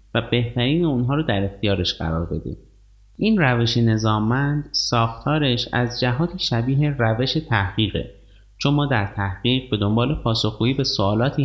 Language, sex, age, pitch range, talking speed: Persian, male, 30-49, 100-130 Hz, 135 wpm